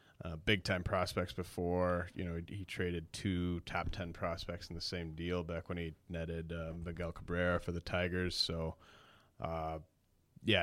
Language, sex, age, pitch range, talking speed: English, male, 30-49, 85-100 Hz, 170 wpm